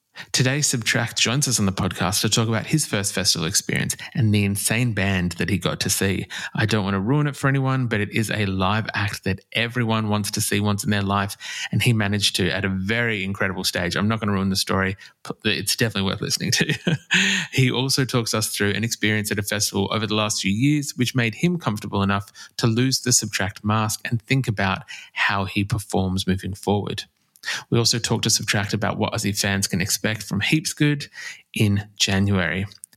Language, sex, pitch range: English, male, 100-130 Hz